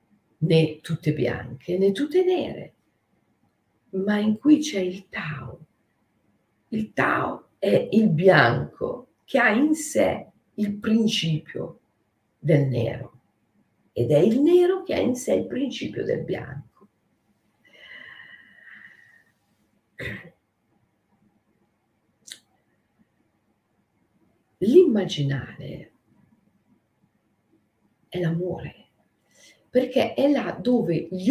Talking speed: 85 wpm